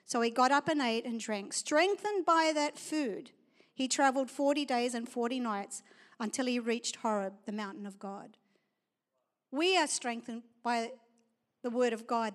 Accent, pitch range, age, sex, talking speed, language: Australian, 225-285 Hz, 50-69, female, 170 wpm, English